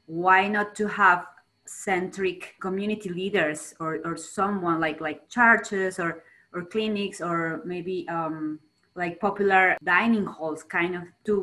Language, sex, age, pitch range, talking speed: English, female, 20-39, 160-195 Hz, 135 wpm